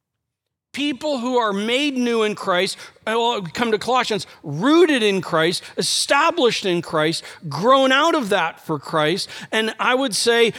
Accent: American